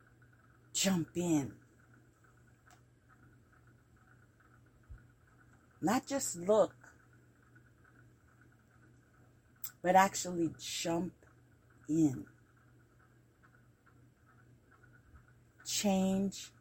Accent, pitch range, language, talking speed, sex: American, 120-165 Hz, English, 35 wpm, female